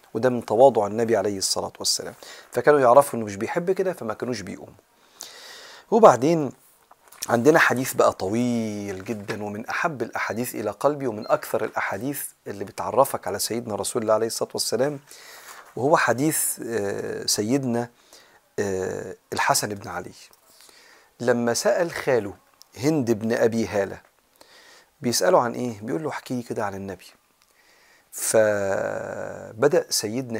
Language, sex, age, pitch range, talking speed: Arabic, male, 40-59, 110-150 Hz, 120 wpm